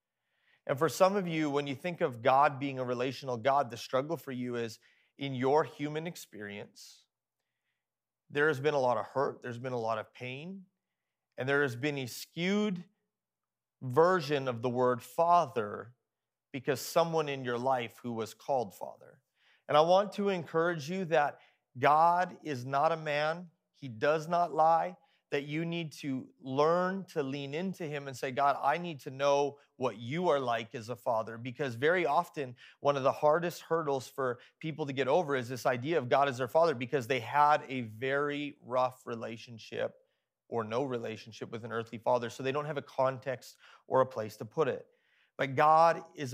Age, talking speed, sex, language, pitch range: 30-49, 190 wpm, male, English, 125-160 Hz